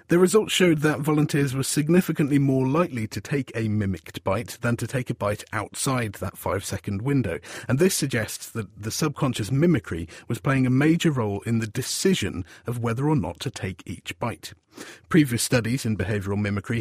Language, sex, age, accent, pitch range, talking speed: English, male, 40-59, British, 105-145 Hz, 180 wpm